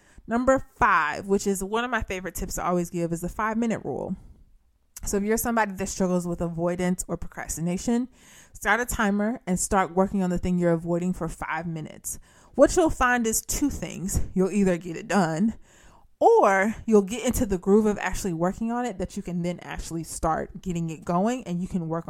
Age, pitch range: 20-39, 175-215 Hz